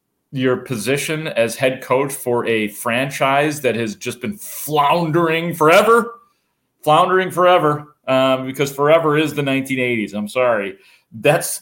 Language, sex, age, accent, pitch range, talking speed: English, male, 30-49, American, 120-155 Hz, 130 wpm